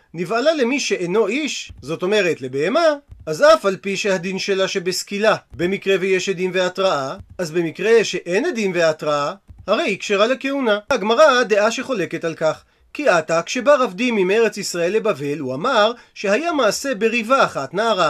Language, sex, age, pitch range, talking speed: Hebrew, male, 40-59, 180-230 Hz, 155 wpm